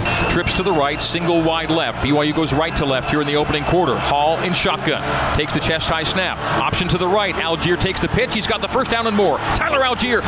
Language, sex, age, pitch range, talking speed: English, male, 40-59, 150-195 Hz, 245 wpm